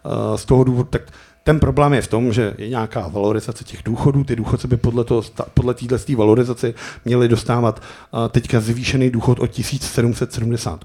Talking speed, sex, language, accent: 160 wpm, male, Czech, native